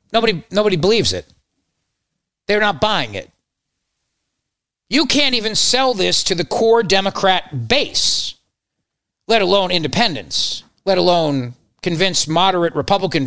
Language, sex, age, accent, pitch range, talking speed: English, male, 40-59, American, 170-230 Hz, 120 wpm